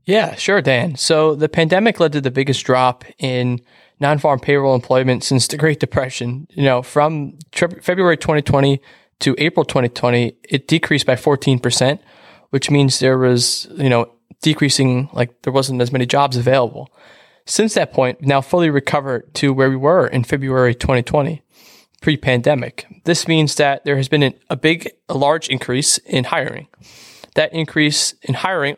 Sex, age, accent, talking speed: male, 20-39, American, 155 wpm